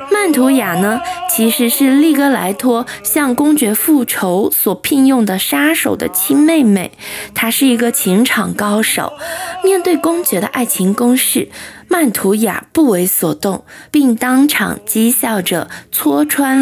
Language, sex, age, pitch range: Chinese, female, 20-39, 200-295 Hz